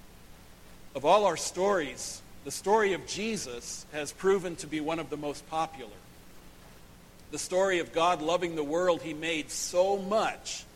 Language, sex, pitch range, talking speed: English, male, 150-185 Hz, 155 wpm